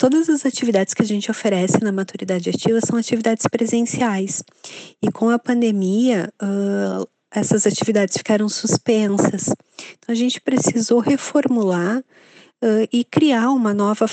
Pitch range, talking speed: 200-240 Hz, 135 wpm